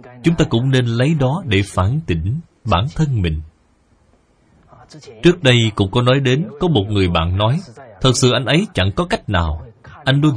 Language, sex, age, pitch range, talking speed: Vietnamese, male, 20-39, 95-145 Hz, 190 wpm